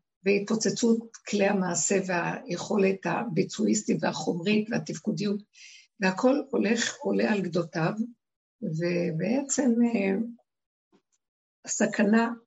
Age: 60-79